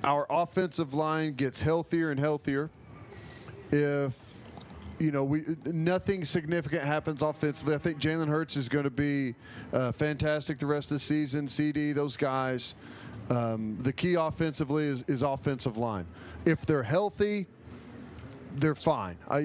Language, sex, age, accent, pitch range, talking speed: English, male, 40-59, American, 135-160 Hz, 145 wpm